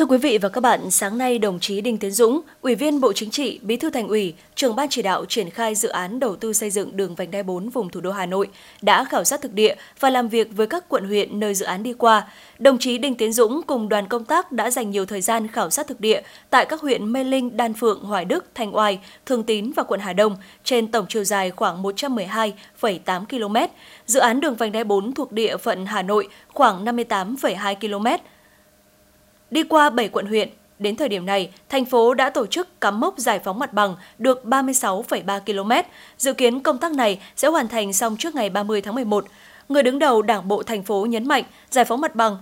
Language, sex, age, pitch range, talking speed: Vietnamese, female, 20-39, 205-260 Hz, 235 wpm